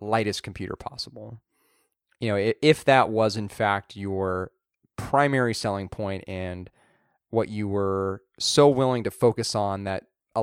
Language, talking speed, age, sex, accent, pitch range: English, 145 wpm, 30-49, male, American, 100-115 Hz